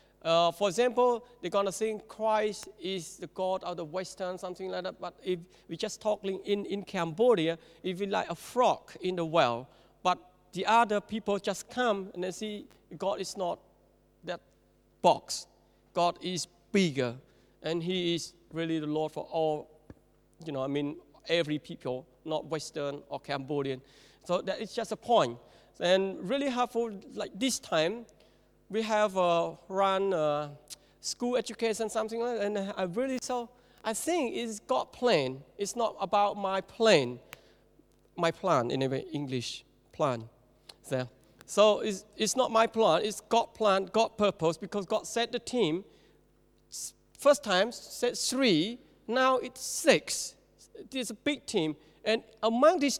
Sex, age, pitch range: male, 50-69, 165-225 Hz